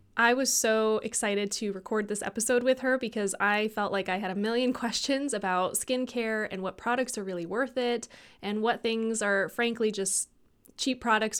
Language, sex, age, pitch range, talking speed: English, female, 20-39, 195-230 Hz, 190 wpm